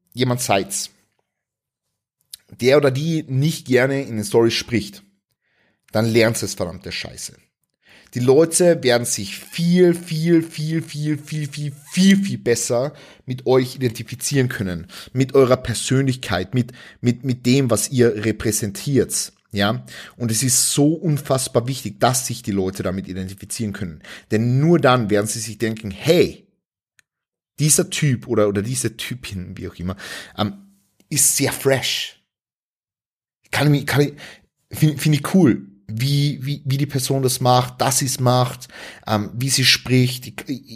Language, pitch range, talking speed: German, 110-150 Hz, 150 wpm